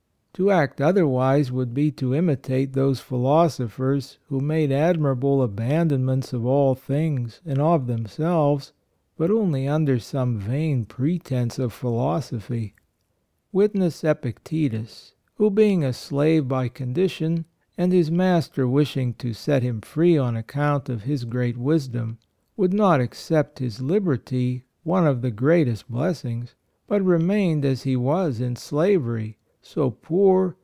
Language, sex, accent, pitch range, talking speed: English, male, American, 125-165 Hz, 135 wpm